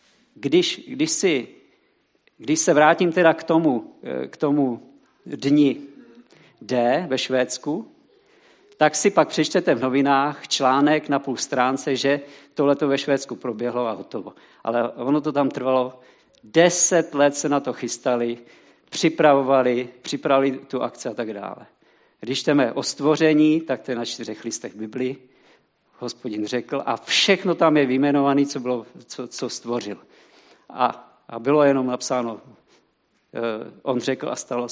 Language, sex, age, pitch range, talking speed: Czech, male, 50-69, 130-155 Hz, 145 wpm